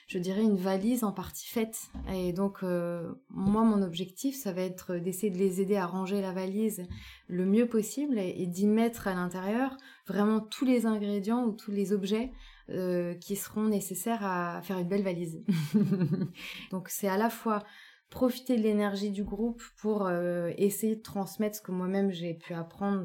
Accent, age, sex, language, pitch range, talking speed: French, 20-39, female, French, 180-220 Hz, 180 wpm